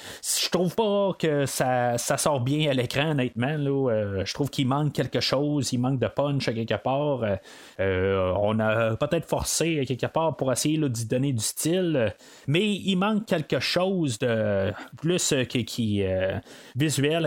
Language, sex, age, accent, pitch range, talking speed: French, male, 30-49, Canadian, 115-155 Hz, 185 wpm